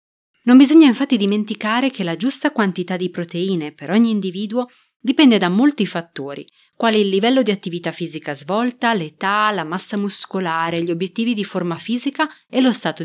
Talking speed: 165 wpm